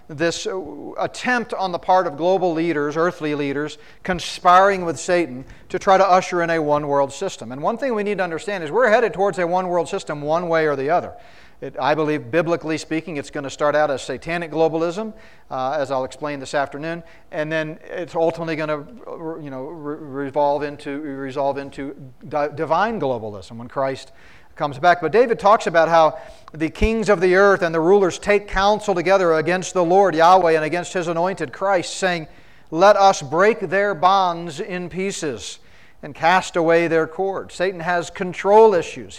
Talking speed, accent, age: 190 wpm, American, 40-59